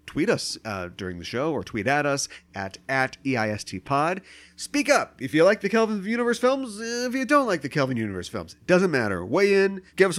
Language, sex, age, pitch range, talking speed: English, male, 30-49, 115-170 Hz, 220 wpm